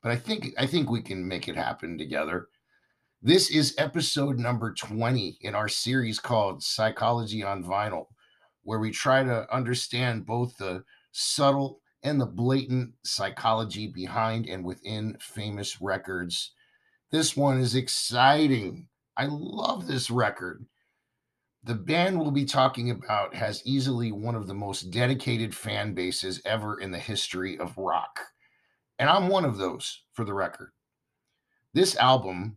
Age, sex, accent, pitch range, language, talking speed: 50-69, male, American, 105-135 Hz, English, 145 wpm